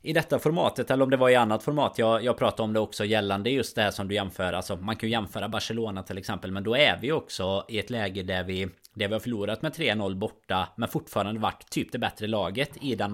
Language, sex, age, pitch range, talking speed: Swedish, male, 20-39, 100-125 Hz, 260 wpm